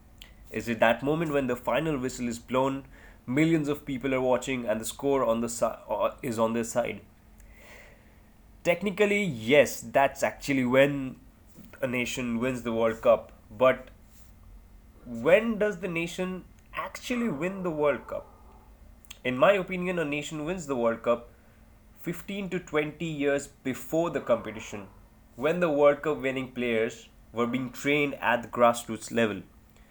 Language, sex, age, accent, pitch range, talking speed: English, male, 20-39, Indian, 110-155 Hz, 155 wpm